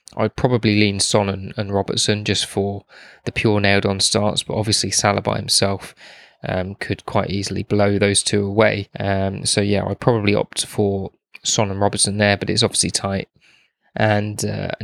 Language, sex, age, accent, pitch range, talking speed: English, male, 20-39, British, 100-110 Hz, 170 wpm